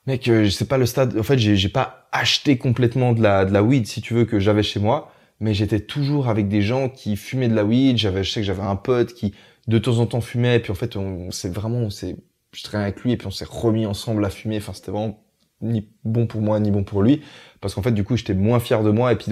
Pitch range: 100-120 Hz